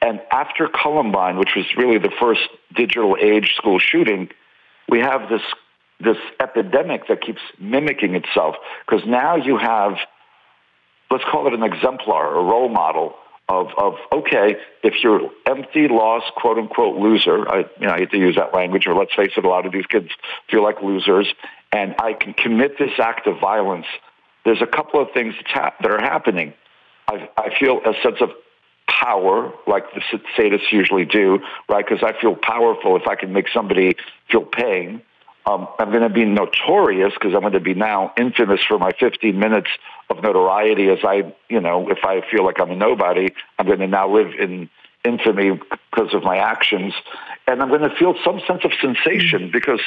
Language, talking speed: English, 185 wpm